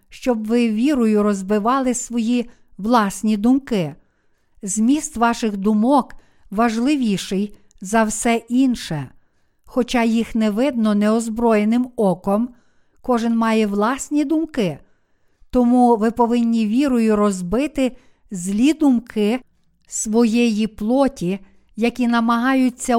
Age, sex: 50-69, female